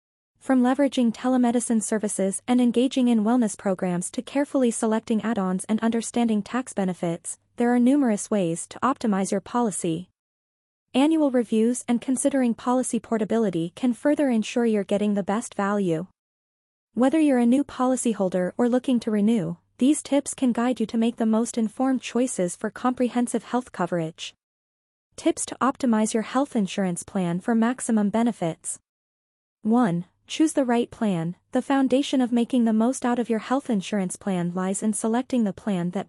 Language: English